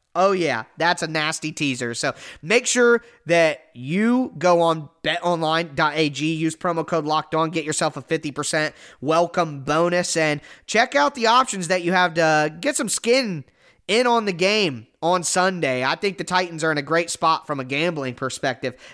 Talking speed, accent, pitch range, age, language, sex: 175 wpm, American, 155-205 Hz, 20-39, English, male